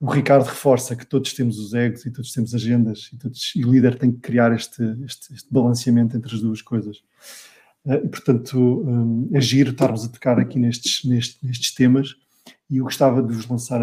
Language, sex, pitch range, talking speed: English, male, 120-135 Hz, 195 wpm